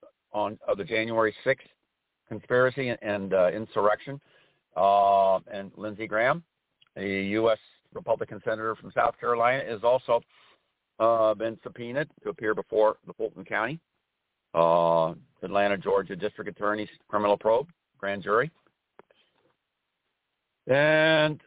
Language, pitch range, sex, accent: English, 95-140 Hz, male, American